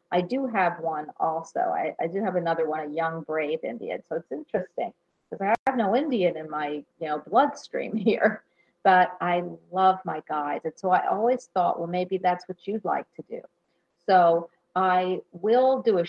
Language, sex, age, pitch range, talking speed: English, female, 40-59, 175-230 Hz, 185 wpm